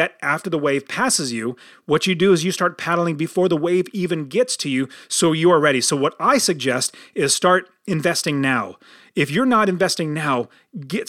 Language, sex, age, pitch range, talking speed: English, male, 30-49, 145-195 Hz, 200 wpm